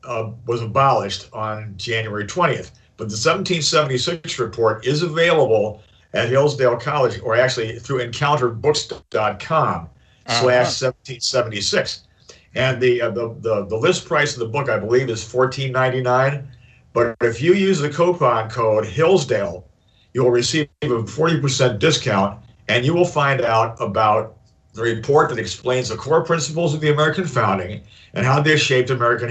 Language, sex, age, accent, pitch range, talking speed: English, male, 50-69, American, 110-145 Hz, 145 wpm